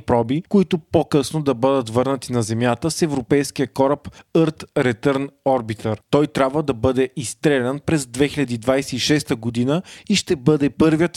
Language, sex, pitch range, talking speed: Bulgarian, male, 125-155 Hz, 140 wpm